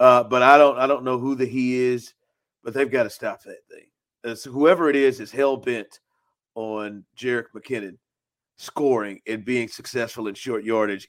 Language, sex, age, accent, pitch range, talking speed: English, male, 40-59, American, 125-175 Hz, 195 wpm